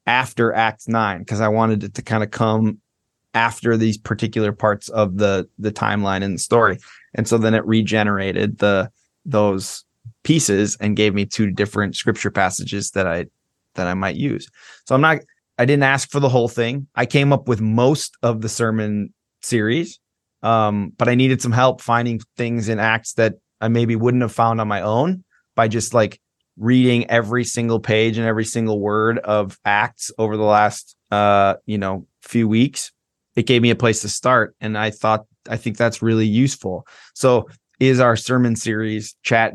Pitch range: 105-120 Hz